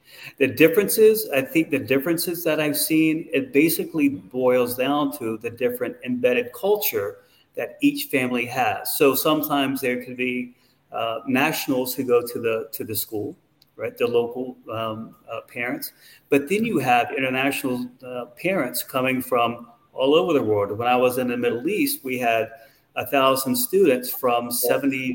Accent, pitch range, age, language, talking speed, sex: American, 125-170 Hz, 40-59, English, 165 wpm, male